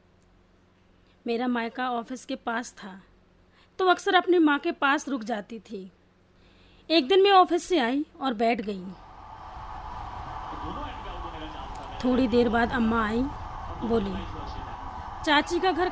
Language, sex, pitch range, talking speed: Hindi, female, 190-290 Hz, 125 wpm